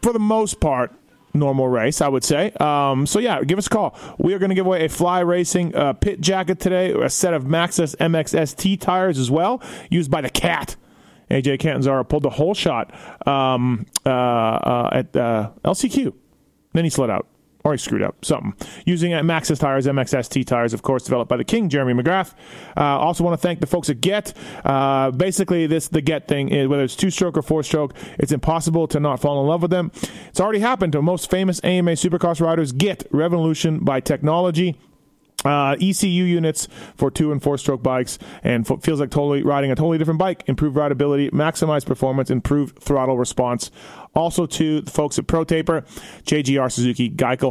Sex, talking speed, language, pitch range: male, 200 wpm, English, 130-175 Hz